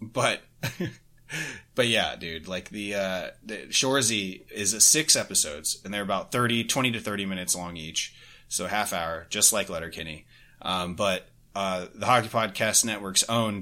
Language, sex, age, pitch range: English, male, 30-49, 95-115 Hz